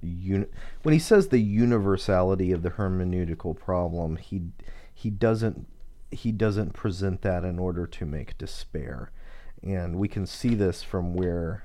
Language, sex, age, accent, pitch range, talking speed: English, male, 40-59, American, 90-105 Hz, 150 wpm